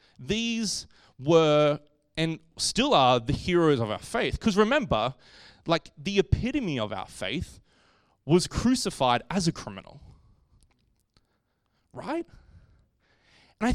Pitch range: 120-175 Hz